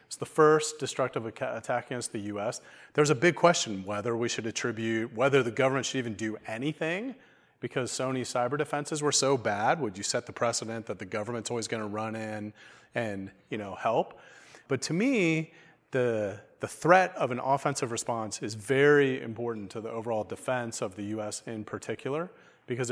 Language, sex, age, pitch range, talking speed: English, male, 30-49, 115-145 Hz, 180 wpm